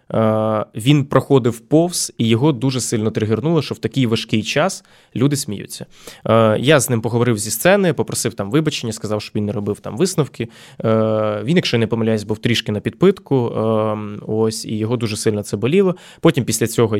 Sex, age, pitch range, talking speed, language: male, 20-39, 110-135 Hz, 175 wpm, Ukrainian